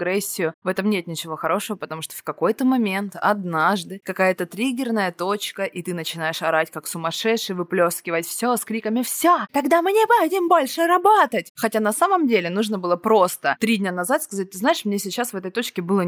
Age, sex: 20-39, female